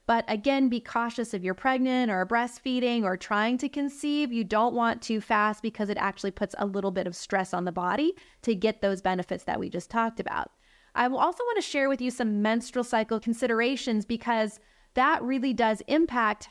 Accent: American